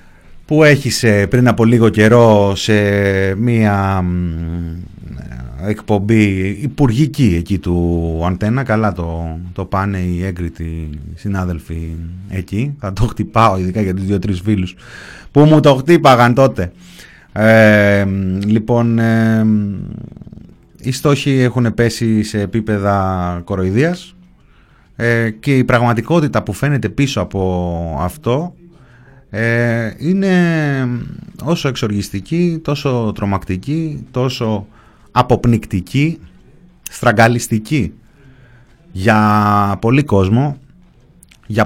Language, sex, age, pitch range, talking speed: Greek, male, 30-49, 95-130 Hz, 90 wpm